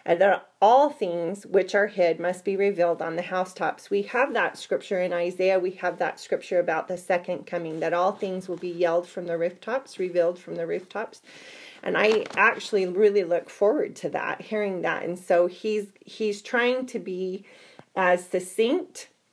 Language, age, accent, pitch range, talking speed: English, 30-49, American, 175-205 Hz, 185 wpm